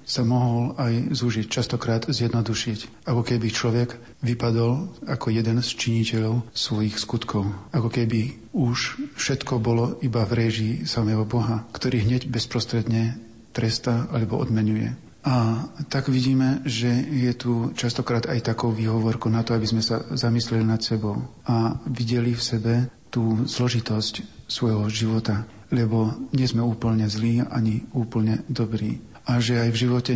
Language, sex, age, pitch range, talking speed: Slovak, male, 50-69, 115-125 Hz, 140 wpm